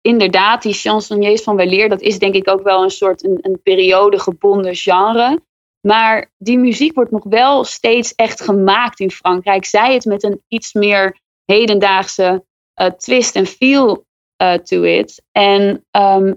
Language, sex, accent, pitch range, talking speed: Dutch, female, Dutch, 195-235 Hz, 165 wpm